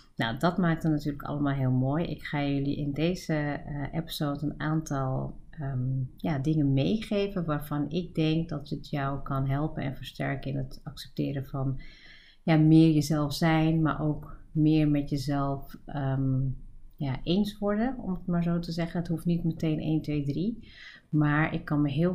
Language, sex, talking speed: Dutch, female, 165 wpm